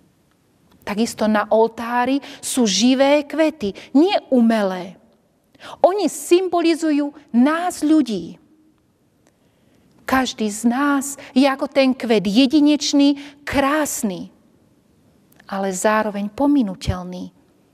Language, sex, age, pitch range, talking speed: Slovak, female, 30-49, 225-315 Hz, 80 wpm